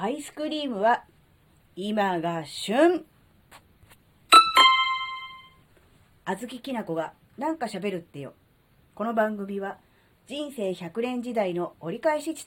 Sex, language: female, Japanese